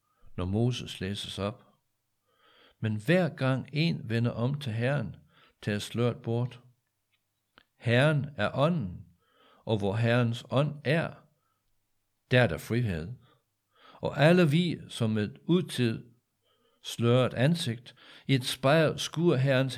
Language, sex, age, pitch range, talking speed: Danish, male, 60-79, 105-145 Hz, 120 wpm